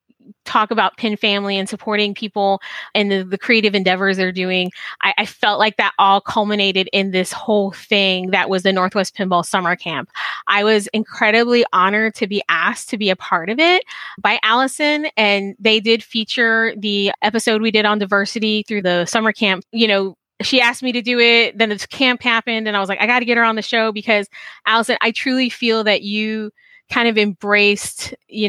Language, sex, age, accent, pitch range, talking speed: English, female, 20-39, American, 200-245 Hz, 200 wpm